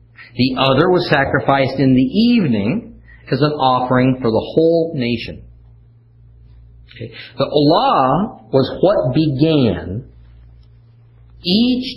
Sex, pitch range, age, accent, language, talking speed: male, 110-145 Hz, 50-69, American, English, 105 wpm